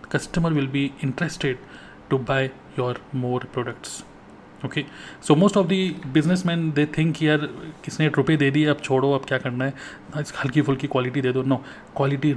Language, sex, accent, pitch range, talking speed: Hindi, male, native, 140-165 Hz, 180 wpm